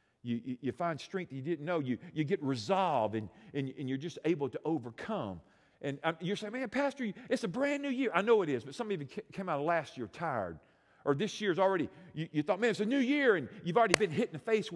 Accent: American